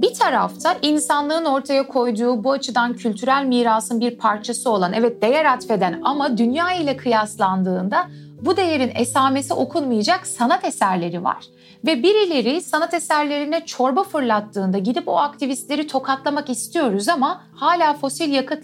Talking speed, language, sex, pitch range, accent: 130 wpm, Turkish, female, 210-290 Hz, native